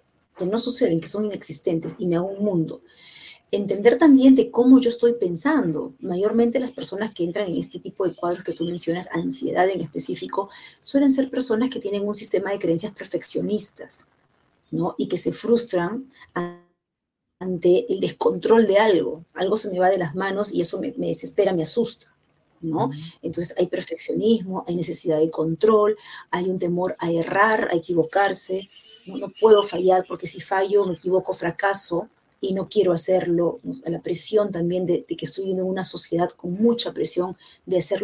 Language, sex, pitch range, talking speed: Spanish, female, 175-215 Hz, 175 wpm